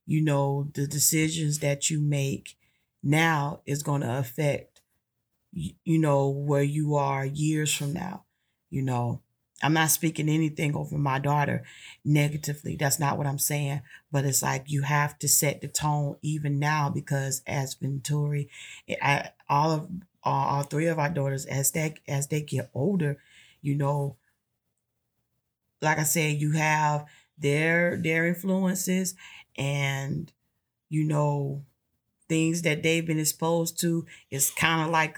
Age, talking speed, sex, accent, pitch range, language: 40-59, 145 wpm, female, American, 145-160 Hz, English